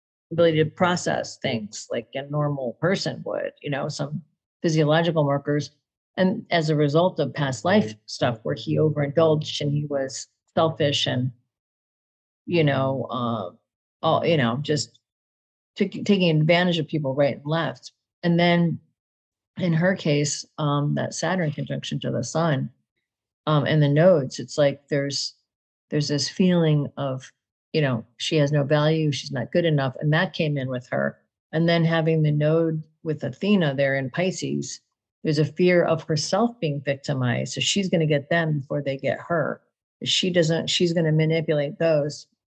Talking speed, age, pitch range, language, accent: 165 wpm, 40-59, 140-165 Hz, English, American